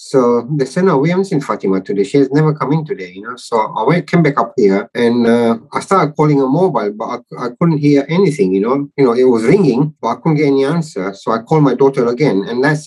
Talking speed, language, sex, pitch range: 265 wpm, English, male, 105-145 Hz